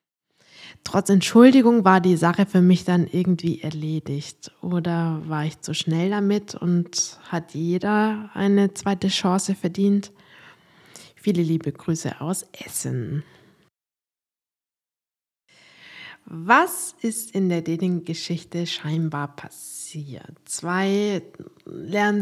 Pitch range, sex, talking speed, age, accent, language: 170-215 Hz, female, 100 wpm, 20-39, German, German